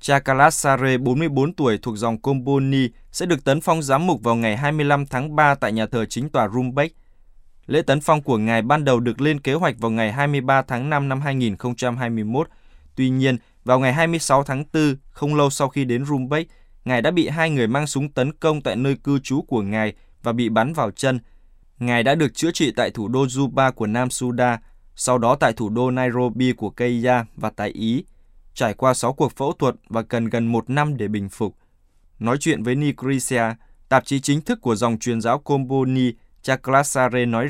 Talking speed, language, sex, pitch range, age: 200 wpm, Vietnamese, male, 115-140 Hz, 20-39